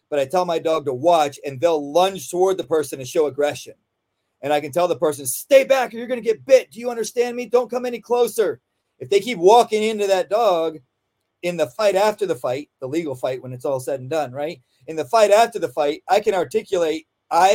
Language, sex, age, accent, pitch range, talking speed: English, male, 40-59, American, 150-205 Hz, 245 wpm